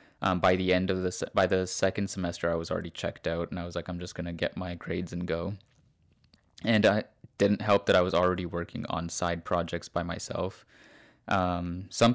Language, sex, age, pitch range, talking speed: English, male, 20-39, 85-100 Hz, 215 wpm